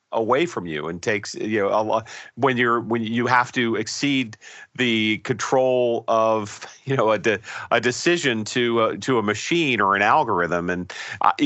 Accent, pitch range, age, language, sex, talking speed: American, 105-130 Hz, 40-59, English, male, 180 wpm